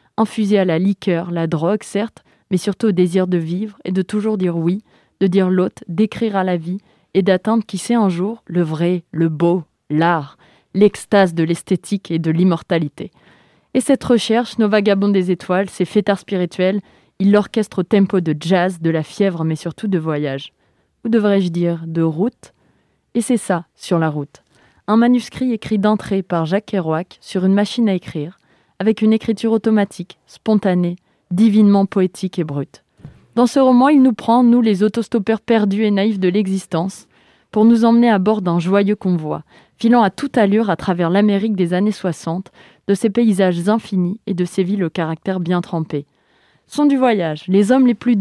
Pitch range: 175-220 Hz